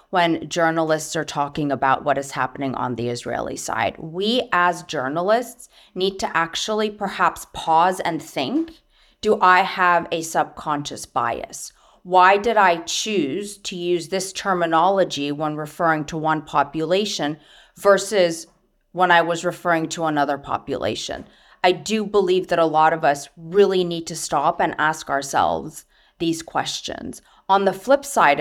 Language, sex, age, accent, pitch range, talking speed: English, female, 30-49, American, 155-200 Hz, 150 wpm